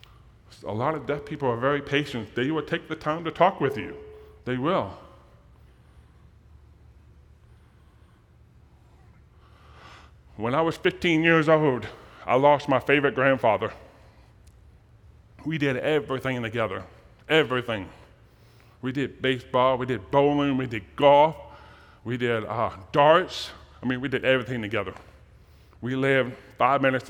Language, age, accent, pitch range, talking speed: English, 30-49, American, 110-140 Hz, 130 wpm